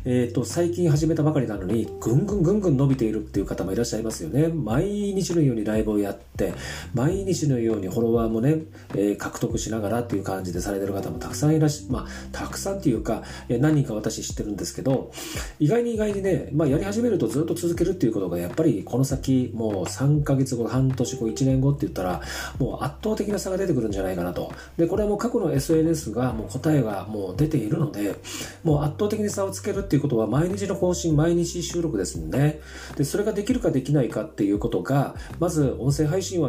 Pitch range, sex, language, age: 110-165 Hz, male, Japanese, 40-59